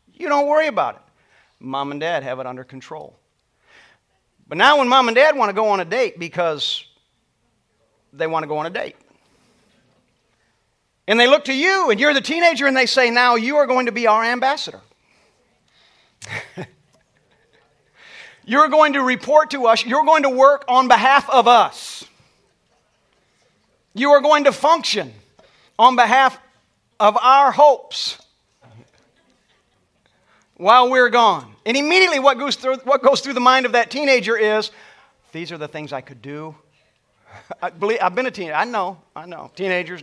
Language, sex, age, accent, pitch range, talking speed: English, male, 40-59, American, 165-270 Hz, 165 wpm